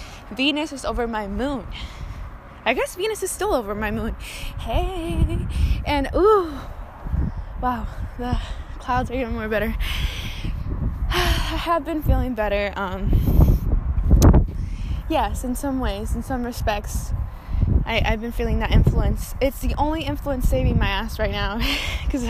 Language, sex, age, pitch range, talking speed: English, female, 10-29, 215-275 Hz, 140 wpm